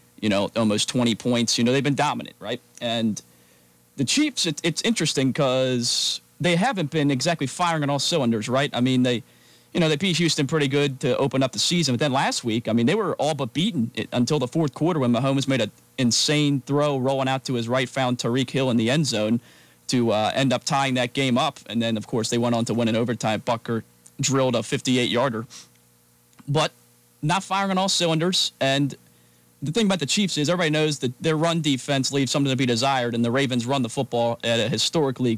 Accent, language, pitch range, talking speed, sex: American, English, 115-140 Hz, 220 wpm, male